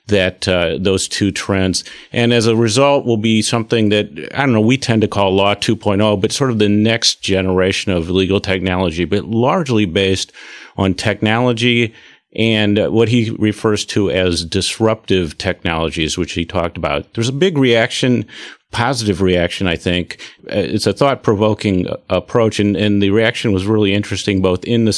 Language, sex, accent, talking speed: English, male, American, 170 wpm